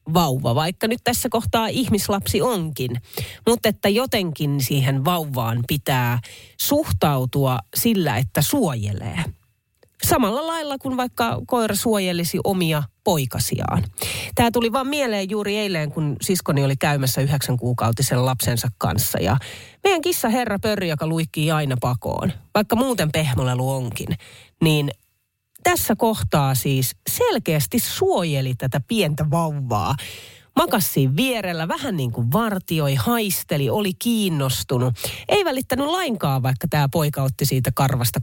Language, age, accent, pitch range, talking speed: Finnish, 30-49, native, 125-210 Hz, 125 wpm